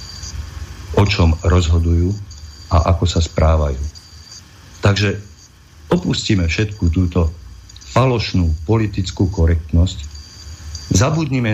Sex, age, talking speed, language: male, 50-69, 80 wpm, Slovak